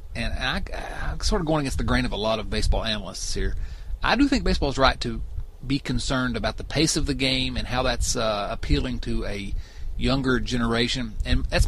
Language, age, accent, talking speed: English, 40-59, American, 215 wpm